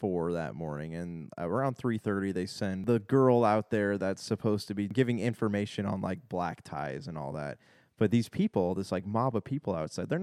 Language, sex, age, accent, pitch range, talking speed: English, male, 20-39, American, 95-115 Hz, 210 wpm